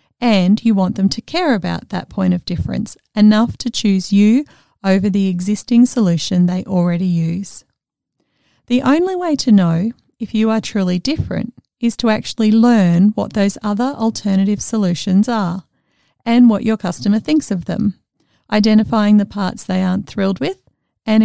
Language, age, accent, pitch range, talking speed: English, 40-59, Australian, 185-230 Hz, 160 wpm